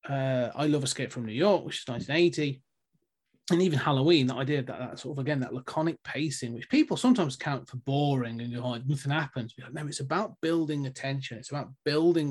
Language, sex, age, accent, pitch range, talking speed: English, male, 30-49, British, 130-155 Hz, 220 wpm